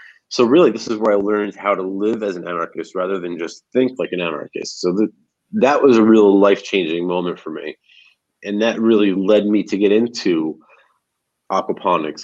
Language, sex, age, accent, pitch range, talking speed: English, male, 30-49, American, 90-115 Hz, 190 wpm